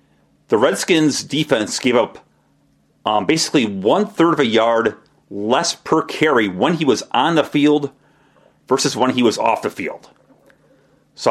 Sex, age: male, 30-49